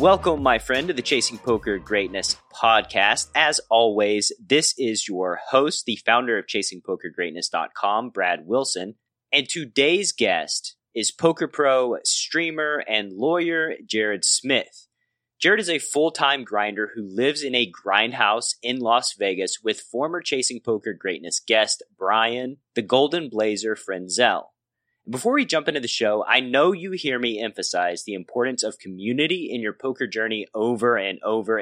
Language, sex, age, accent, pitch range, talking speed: English, male, 30-49, American, 110-155 Hz, 150 wpm